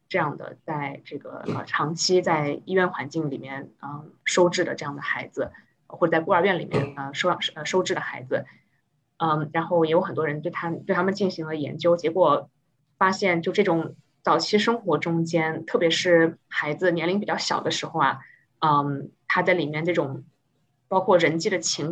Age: 20-39